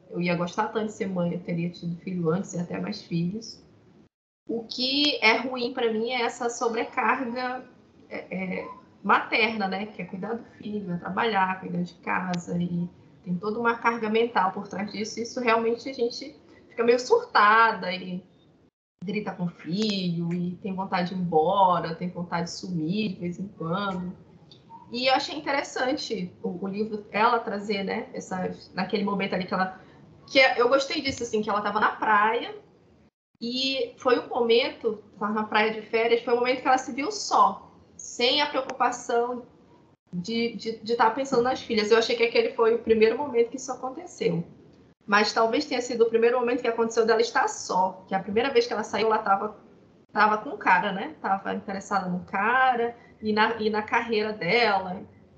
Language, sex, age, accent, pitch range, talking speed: Portuguese, female, 20-39, Brazilian, 190-245 Hz, 185 wpm